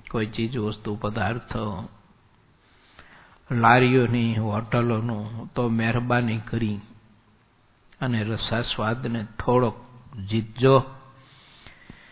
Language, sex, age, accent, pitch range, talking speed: English, male, 60-79, Indian, 110-130 Hz, 80 wpm